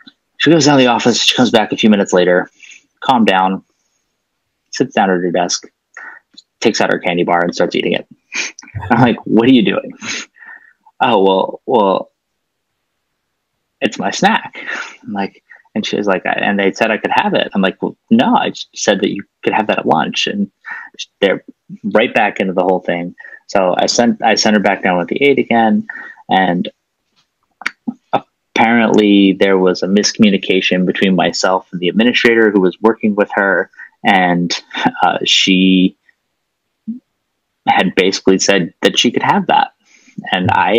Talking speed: 175 wpm